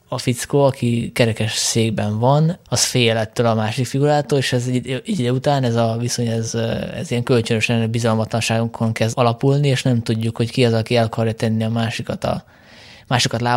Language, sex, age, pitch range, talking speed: Hungarian, male, 20-39, 115-130 Hz, 185 wpm